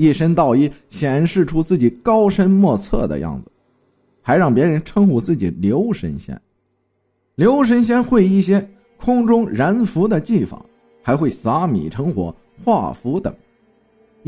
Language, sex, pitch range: Chinese, male, 135-220 Hz